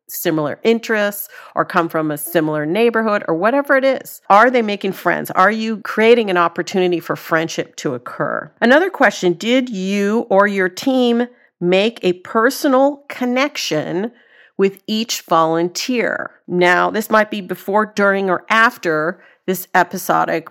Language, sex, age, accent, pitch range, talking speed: English, female, 50-69, American, 165-225 Hz, 145 wpm